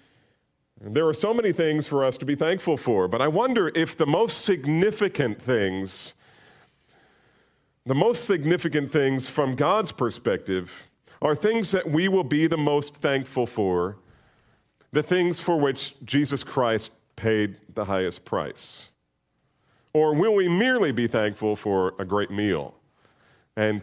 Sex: male